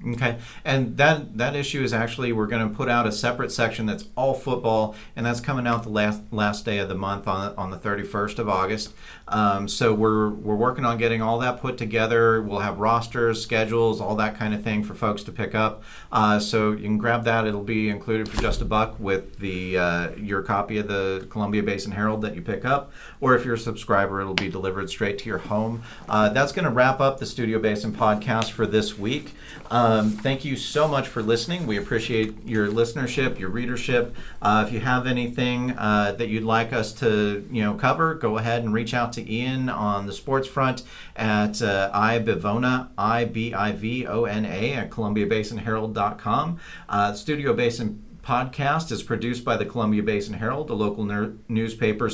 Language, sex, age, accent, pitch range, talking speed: English, male, 40-59, American, 105-120 Hz, 200 wpm